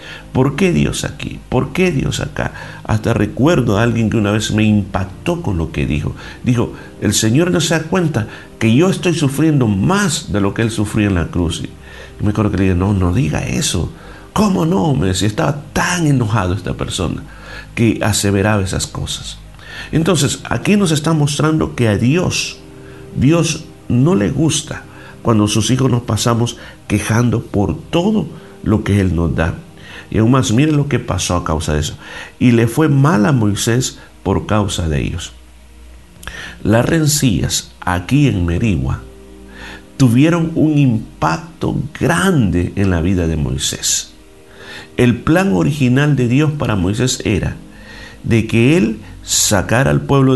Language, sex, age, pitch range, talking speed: Spanish, male, 50-69, 95-140 Hz, 165 wpm